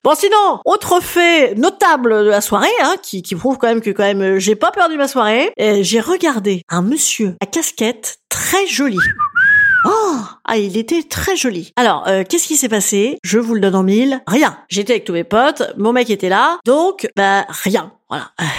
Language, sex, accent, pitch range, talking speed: French, female, French, 220-335 Hz, 205 wpm